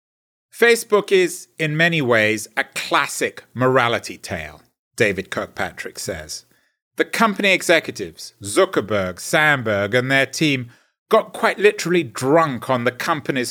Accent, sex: British, male